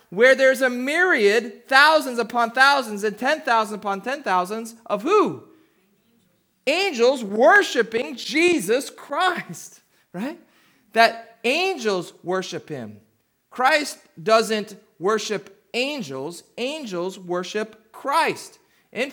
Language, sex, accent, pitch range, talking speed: English, male, American, 200-260 Hz, 100 wpm